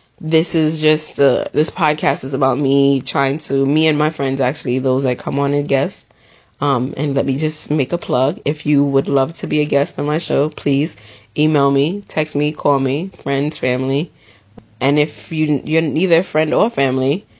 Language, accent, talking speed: English, American, 205 wpm